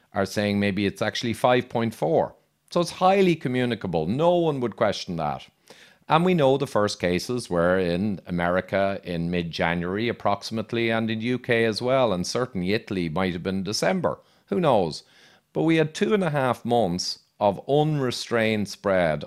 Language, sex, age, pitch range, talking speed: English, male, 40-59, 100-135 Hz, 160 wpm